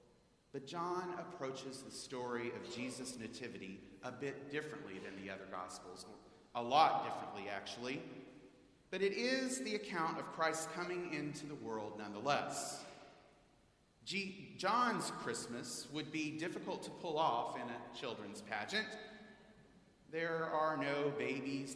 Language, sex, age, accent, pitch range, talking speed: English, male, 30-49, American, 135-185 Hz, 130 wpm